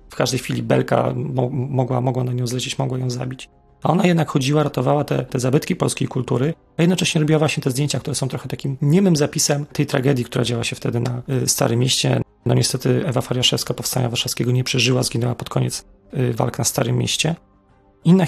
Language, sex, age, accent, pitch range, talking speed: Polish, male, 30-49, native, 125-145 Hz, 190 wpm